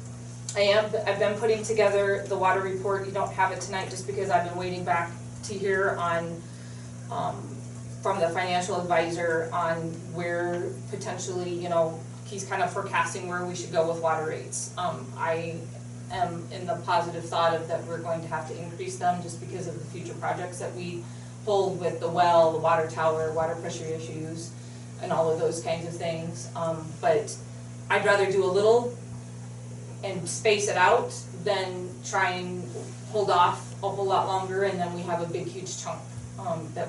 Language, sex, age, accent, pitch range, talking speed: English, female, 30-49, American, 115-175 Hz, 185 wpm